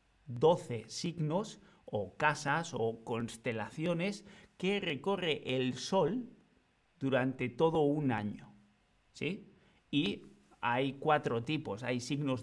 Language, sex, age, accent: Spanish, male, 50-69, Spanish